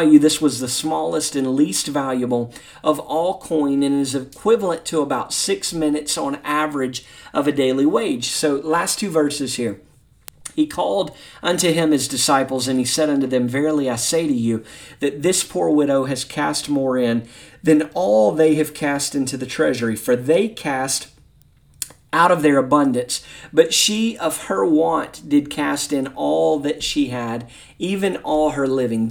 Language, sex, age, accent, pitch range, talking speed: English, male, 40-59, American, 130-160 Hz, 175 wpm